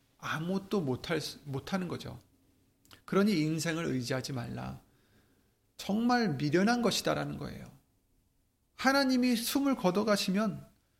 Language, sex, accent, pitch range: Korean, male, native, 125-195 Hz